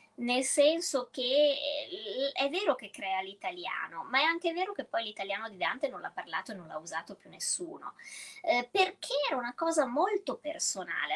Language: Italian